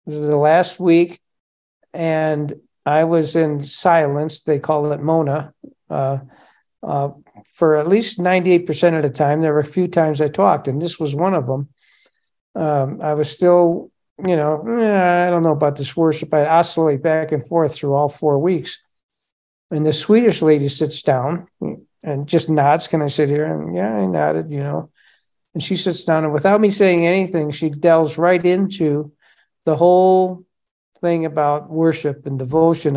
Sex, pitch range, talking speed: male, 150-175 Hz, 175 wpm